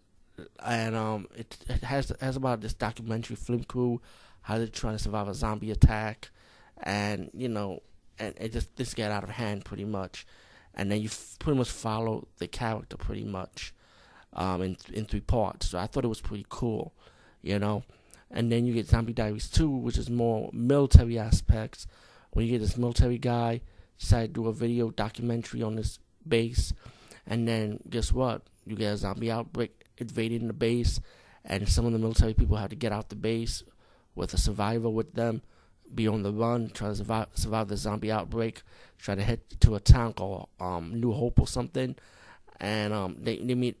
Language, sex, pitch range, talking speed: English, male, 100-115 Hz, 195 wpm